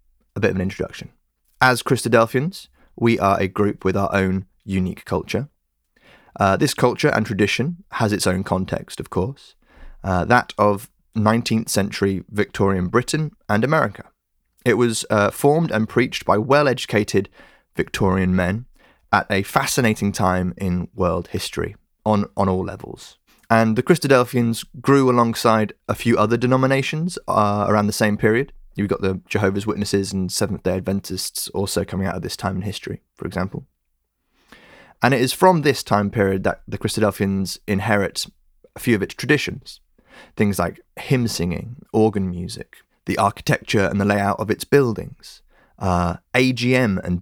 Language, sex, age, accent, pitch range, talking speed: English, male, 20-39, British, 95-120 Hz, 155 wpm